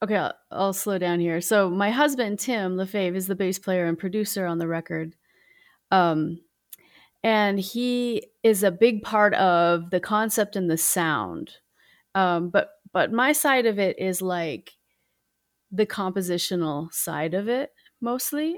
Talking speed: 155 wpm